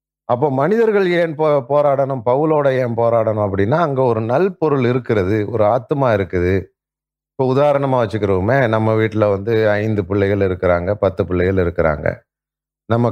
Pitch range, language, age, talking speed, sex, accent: 95-115 Hz, Tamil, 30-49, 135 wpm, male, native